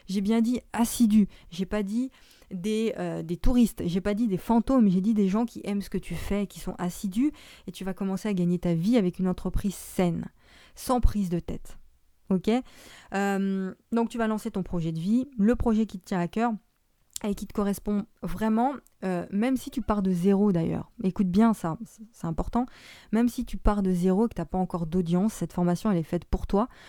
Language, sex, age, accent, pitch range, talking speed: French, female, 20-39, French, 180-225 Hz, 215 wpm